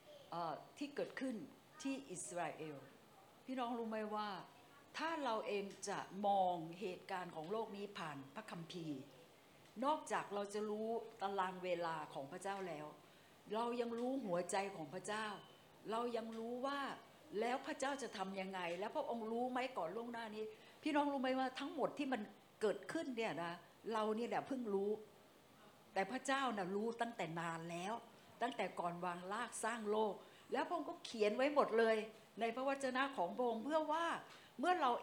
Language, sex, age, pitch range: Thai, female, 60-79, 195-255 Hz